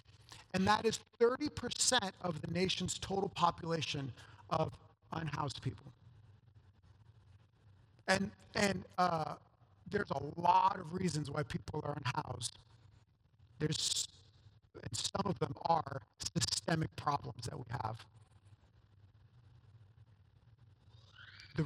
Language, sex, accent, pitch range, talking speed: English, male, American, 115-185 Hz, 100 wpm